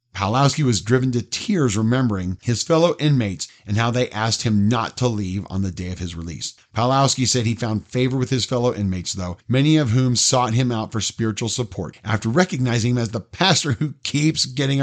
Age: 50-69